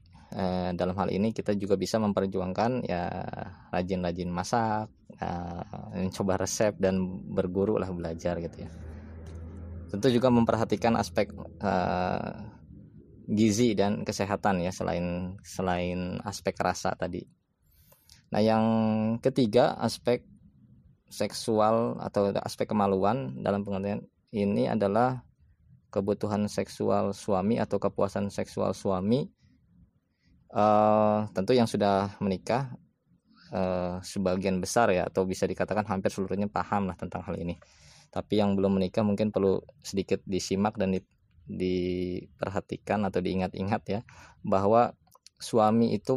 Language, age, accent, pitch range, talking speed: Indonesian, 20-39, native, 95-110 Hz, 115 wpm